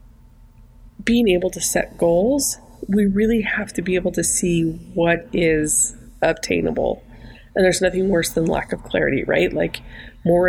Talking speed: 155 wpm